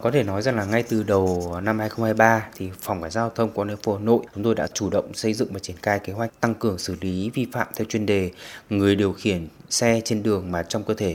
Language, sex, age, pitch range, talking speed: Vietnamese, male, 20-39, 95-120 Hz, 270 wpm